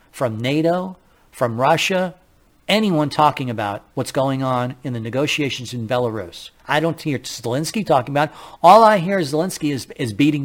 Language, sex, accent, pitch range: English, male, American, 115-155 Hz